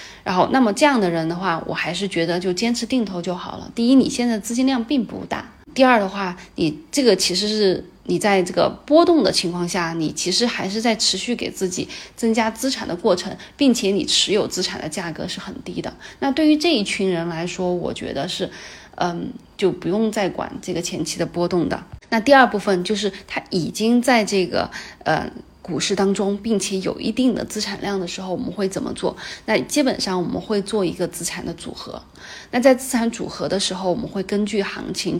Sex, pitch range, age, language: female, 180-230 Hz, 20-39, Chinese